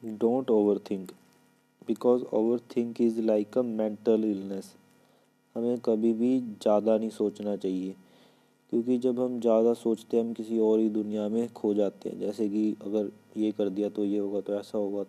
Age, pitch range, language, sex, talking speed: 20-39, 105-115 Hz, Hindi, male, 180 wpm